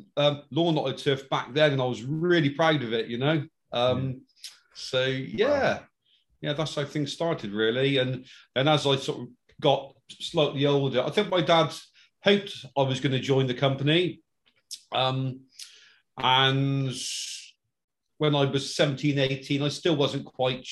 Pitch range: 130-150 Hz